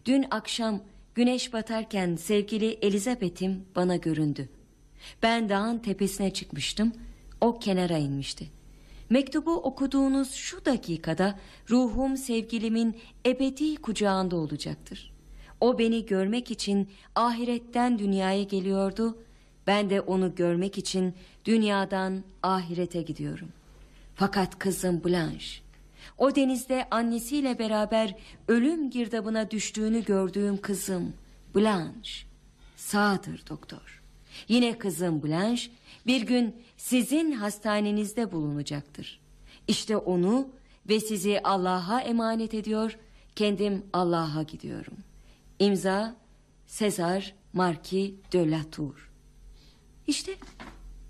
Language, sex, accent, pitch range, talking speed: Dutch, female, Turkish, 185-235 Hz, 90 wpm